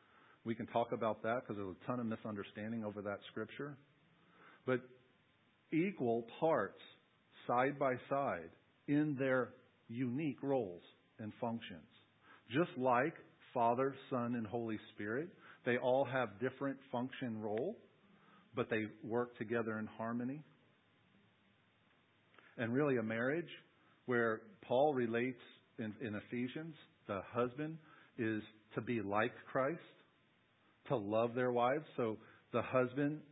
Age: 50-69